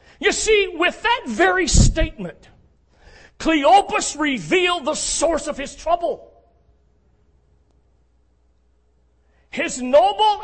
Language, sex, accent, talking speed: English, male, American, 85 wpm